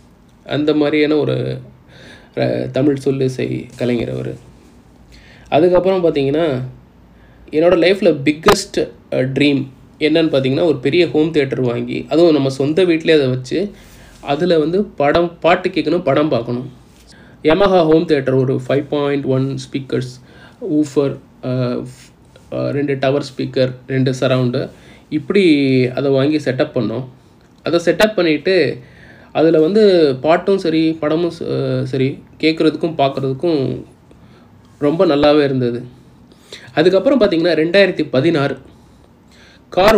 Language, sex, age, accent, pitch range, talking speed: Tamil, male, 20-39, native, 130-160 Hz, 105 wpm